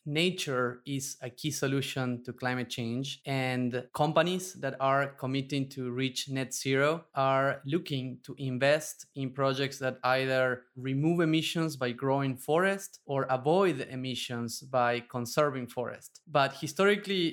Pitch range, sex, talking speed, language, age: 125-150 Hz, male, 130 wpm, English, 20-39